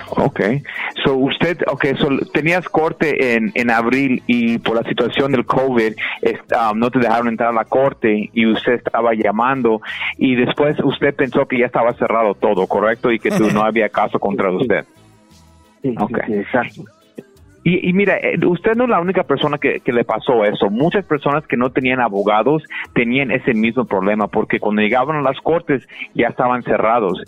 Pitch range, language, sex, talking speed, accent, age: 115-155 Hz, Spanish, male, 180 wpm, Mexican, 40-59